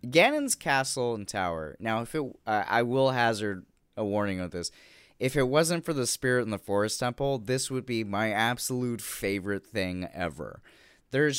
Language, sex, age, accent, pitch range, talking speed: English, male, 20-39, American, 100-130 Hz, 180 wpm